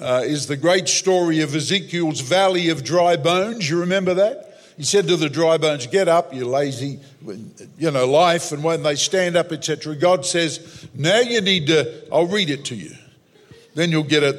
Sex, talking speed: male, 205 wpm